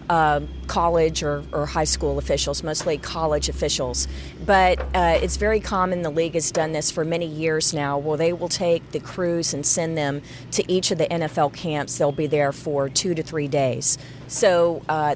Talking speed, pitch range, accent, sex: 195 wpm, 150-175 Hz, American, female